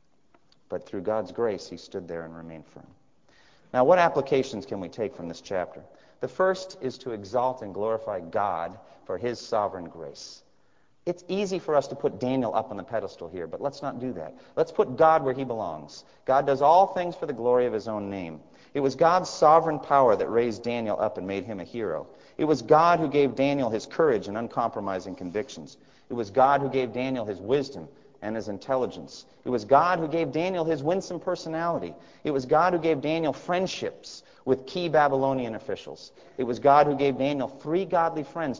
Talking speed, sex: 200 wpm, male